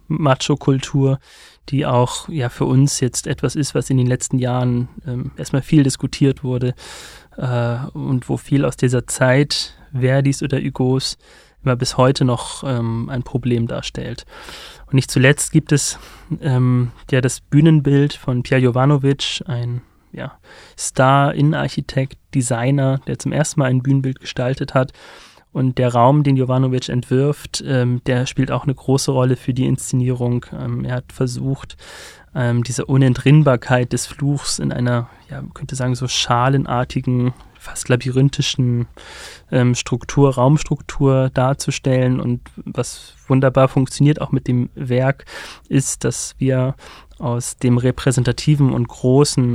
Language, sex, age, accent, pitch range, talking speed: German, male, 30-49, German, 125-140 Hz, 140 wpm